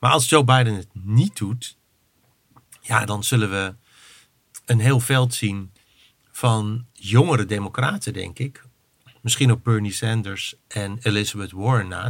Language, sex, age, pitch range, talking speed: Dutch, male, 50-69, 105-120 Hz, 140 wpm